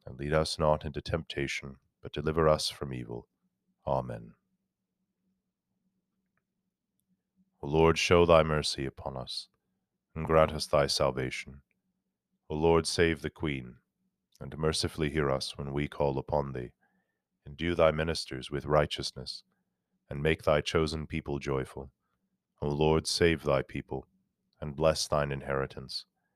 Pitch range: 70-90 Hz